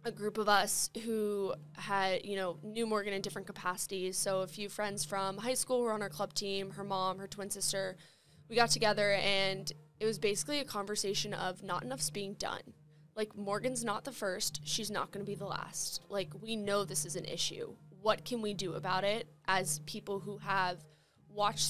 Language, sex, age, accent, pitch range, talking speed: English, female, 20-39, American, 175-210 Hz, 200 wpm